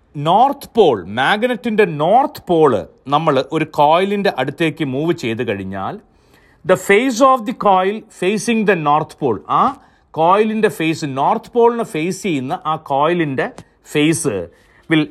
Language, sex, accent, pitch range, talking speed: Malayalam, male, native, 145-210 Hz, 125 wpm